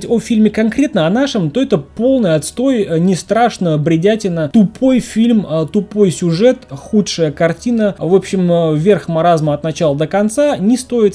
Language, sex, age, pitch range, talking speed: Russian, male, 20-39, 145-210 Hz, 150 wpm